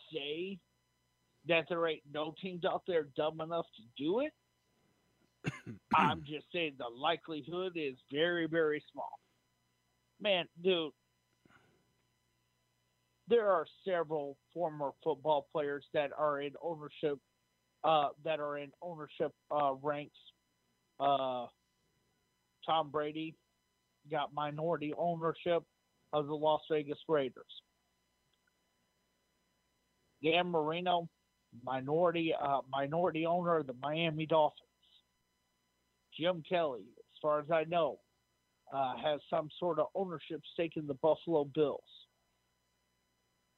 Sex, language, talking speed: male, English, 110 wpm